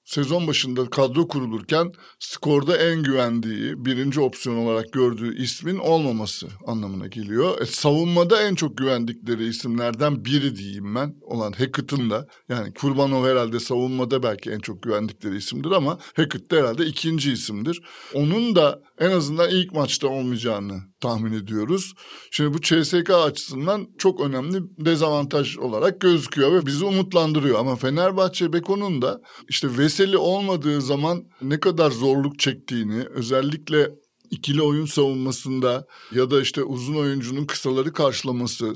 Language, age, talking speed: Turkish, 60-79, 135 wpm